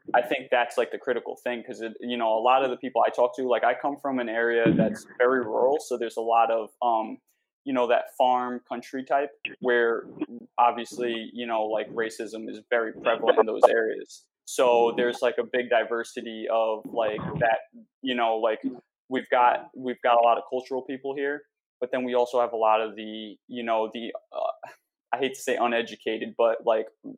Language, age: English, 20-39